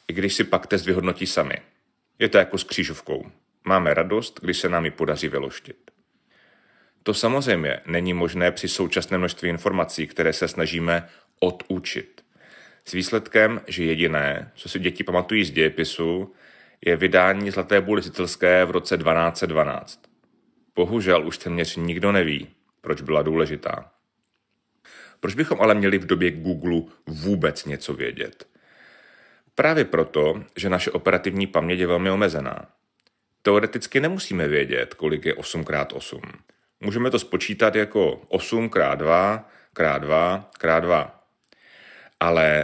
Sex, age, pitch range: male, 30-49, 85-100 Hz